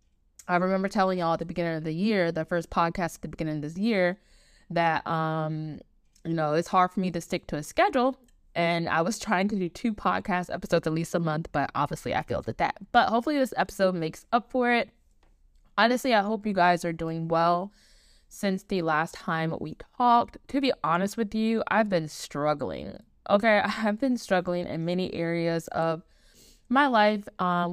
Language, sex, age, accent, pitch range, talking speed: English, female, 20-39, American, 160-205 Hz, 200 wpm